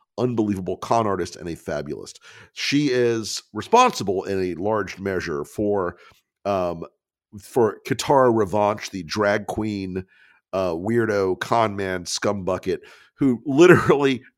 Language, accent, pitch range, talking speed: English, American, 95-125 Hz, 115 wpm